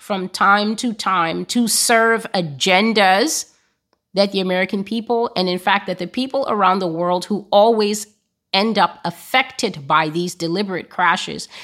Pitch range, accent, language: 170-205 Hz, American, English